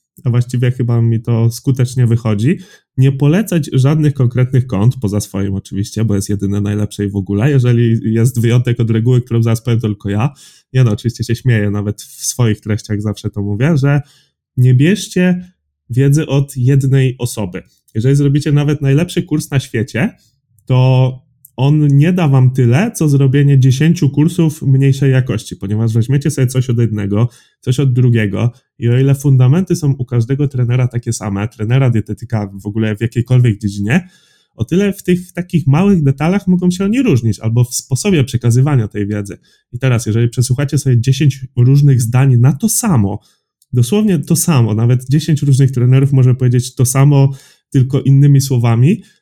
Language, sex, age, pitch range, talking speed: Polish, male, 20-39, 115-140 Hz, 170 wpm